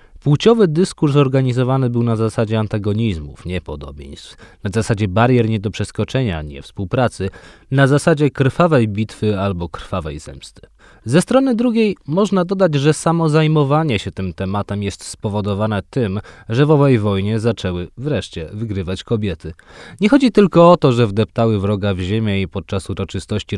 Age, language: 20-39, Polish